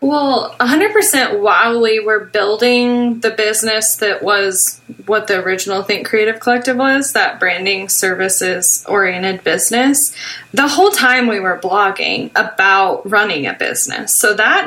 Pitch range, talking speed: 195-235 Hz, 135 wpm